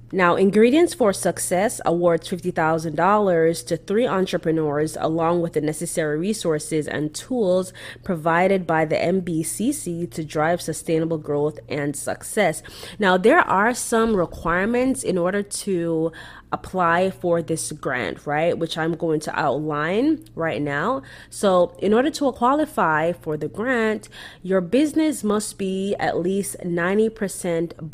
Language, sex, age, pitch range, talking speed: English, female, 20-39, 160-200 Hz, 130 wpm